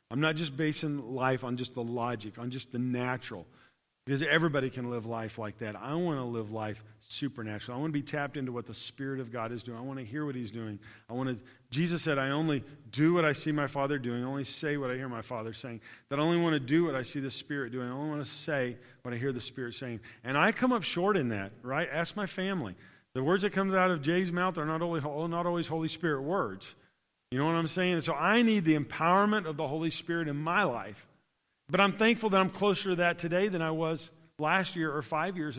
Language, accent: English, American